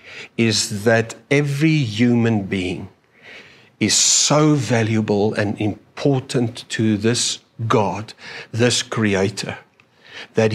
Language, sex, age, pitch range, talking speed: English, male, 60-79, 105-125 Hz, 90 wpm